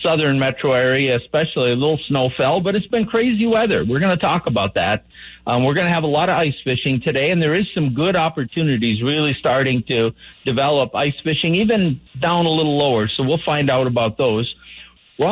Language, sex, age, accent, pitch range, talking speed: English, male, 50-69, American, 125-165 Hz, 210 wpm